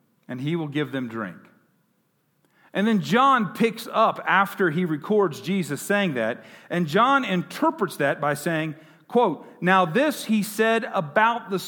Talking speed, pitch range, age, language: 155 wpm, 155-215 Hz, 50-69, English